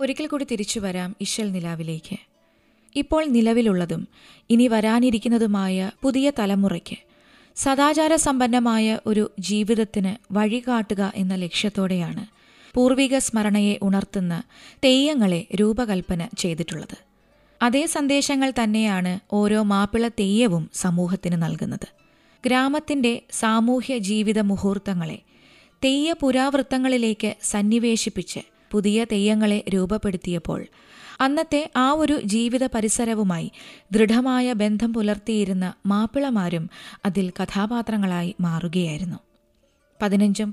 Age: 20-39